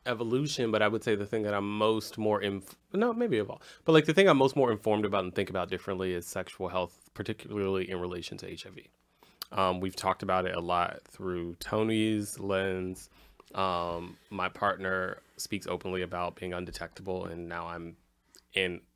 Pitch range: 90-110 Hz